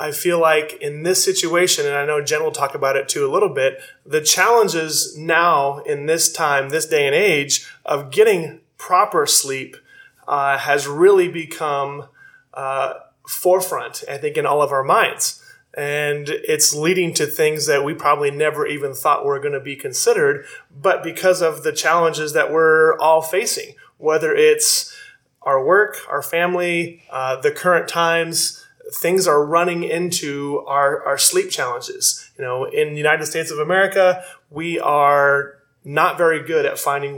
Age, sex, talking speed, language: 30-49, male, 165 wpm, English